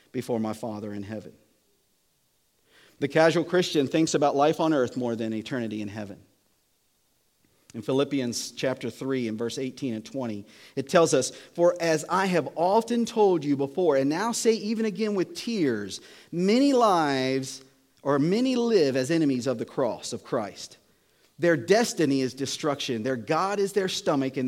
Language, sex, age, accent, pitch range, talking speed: English, male, 50-69, American, 115-170 Hz, 165 wpm